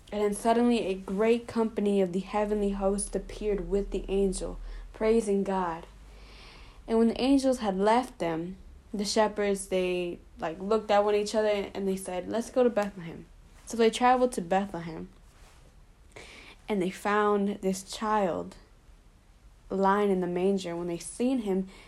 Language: English